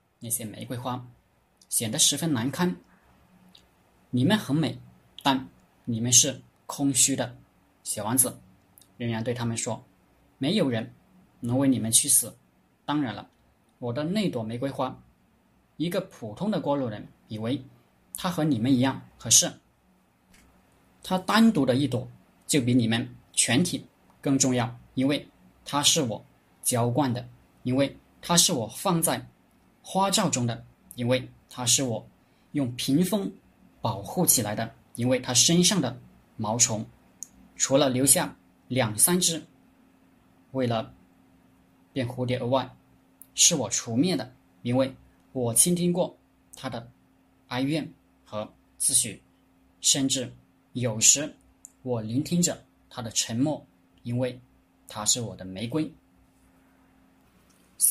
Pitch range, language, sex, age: 115-140 Hz, Chinese, male, 20-39